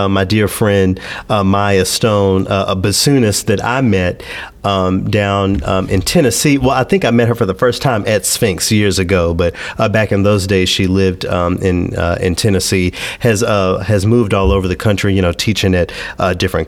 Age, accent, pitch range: 40-59, American, 95-120 Hz